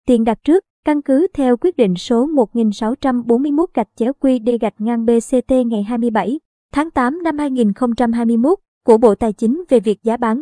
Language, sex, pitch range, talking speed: Vietnamese, male, 215-265 Hz, 175 wpm